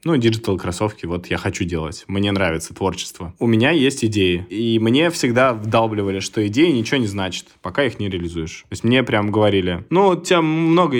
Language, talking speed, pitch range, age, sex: Russian, 190 wpm, 100-125 Hz, 20-39, male